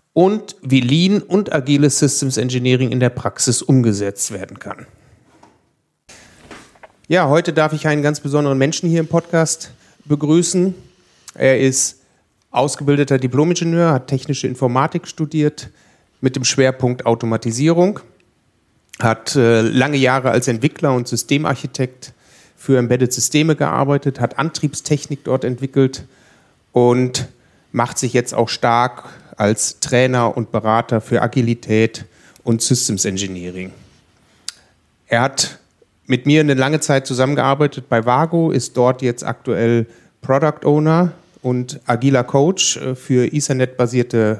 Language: German